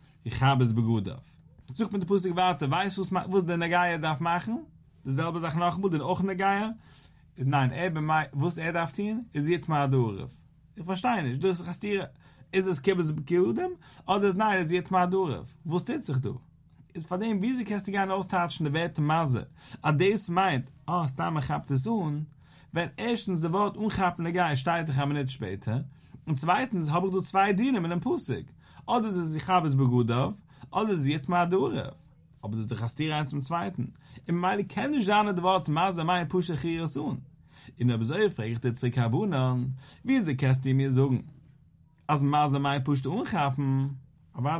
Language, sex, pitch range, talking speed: English, male, 140-190 Hz, 205 wpm